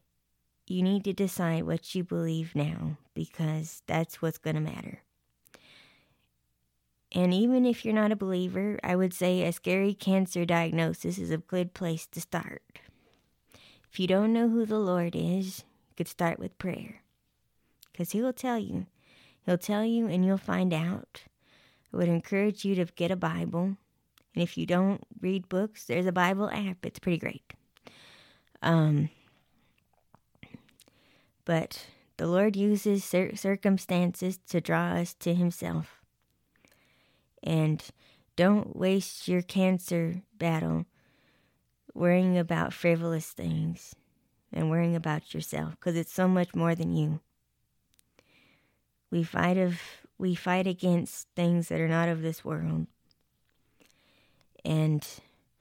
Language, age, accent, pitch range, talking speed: English, 20-39, American, 160-190 Hz, 135 wpm